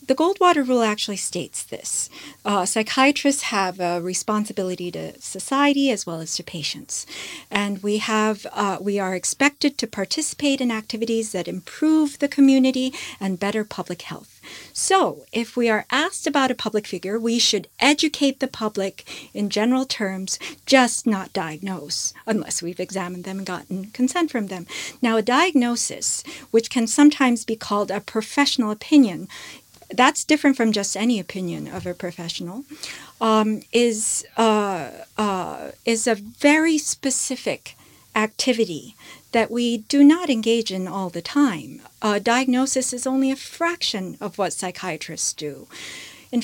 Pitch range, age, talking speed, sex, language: 200-265 Hz, 40-59, 145 wpm, female, English